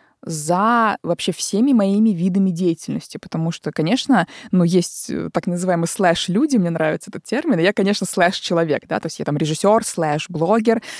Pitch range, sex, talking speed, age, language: 165-210 Hz, female, 180 wpm, 20-39, Russian